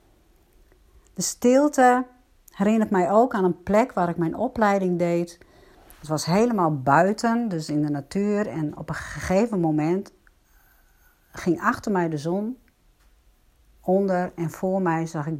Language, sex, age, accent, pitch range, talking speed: Dutch, female, 60-79, Dutch, 165-220 Hz, 145 wpm